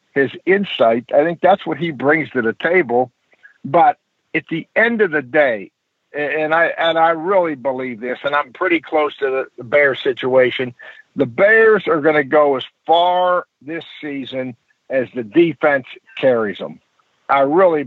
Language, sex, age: English, male, 60-79